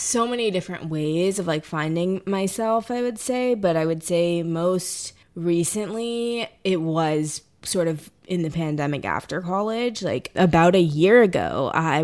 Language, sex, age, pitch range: English, female, 20-39, 155-185 Hz